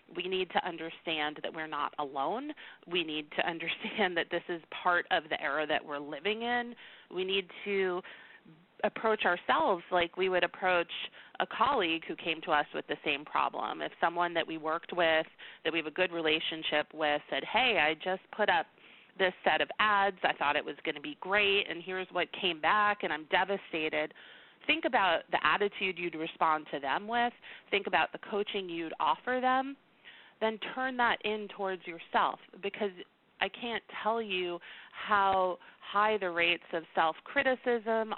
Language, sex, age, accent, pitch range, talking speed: English, female, 30-49, American, 165-205 Hz, 180 wpm